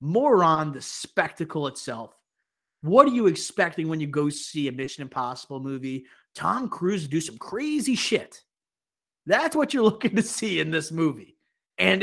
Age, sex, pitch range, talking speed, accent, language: 30-49, male, 145-180 Hz, 165 wpm, American, English